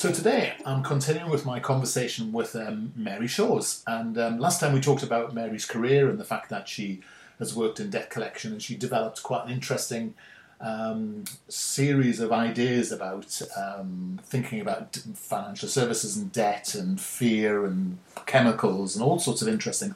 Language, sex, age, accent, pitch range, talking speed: English, male, 40-59, British, 115-145 Hz, 170 wpm